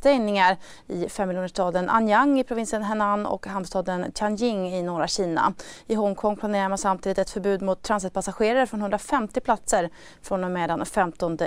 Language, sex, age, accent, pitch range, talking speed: Swedish, female, 30-49, native, 185-220 Hz, 165 wpm